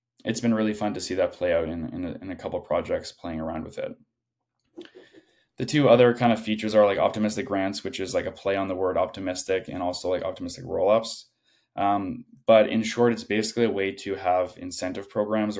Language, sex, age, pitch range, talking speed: English, male, 20-39, 95-115 Hz, 210 wpm